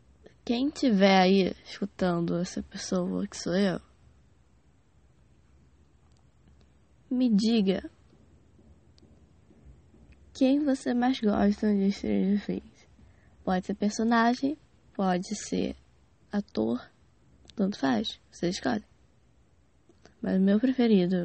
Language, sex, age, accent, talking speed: English, female, 10-29, Brazilian, 90 wpm